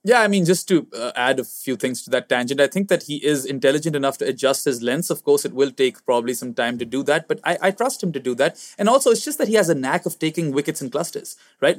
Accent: Indian